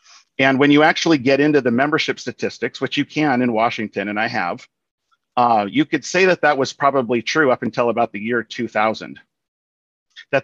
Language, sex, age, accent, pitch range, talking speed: English, male, 40-59, American, 115-140 Hz, 190 wpm